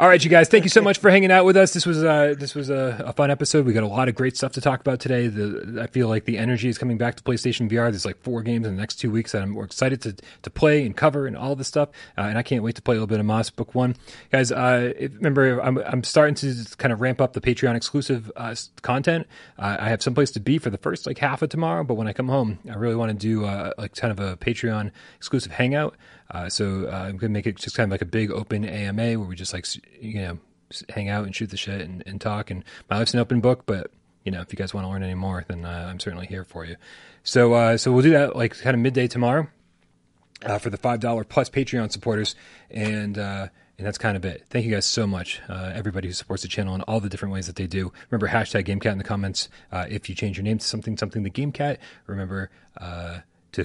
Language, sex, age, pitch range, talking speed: English, male, 30-49, 100-130 Hz, 275 wpm